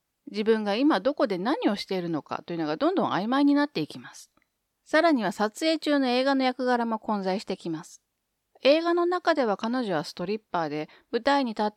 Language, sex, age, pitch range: Japanese, female, 40-59, 185-275 Hz